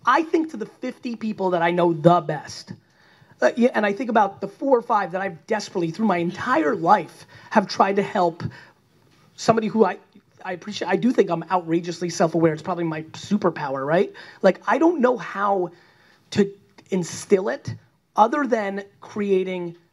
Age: 30-49